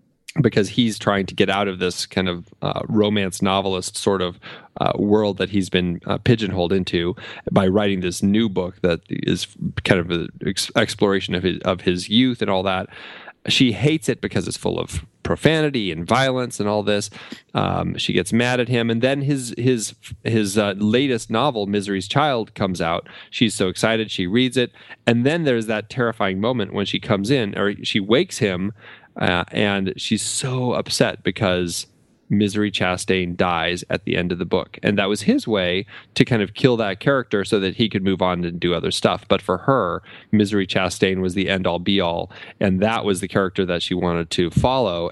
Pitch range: 95-115 Hz